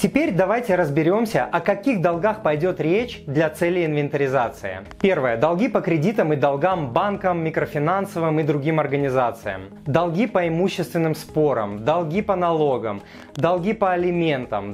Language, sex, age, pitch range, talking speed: Russian, male, 20-39, 150-195 Hz, 130 wpm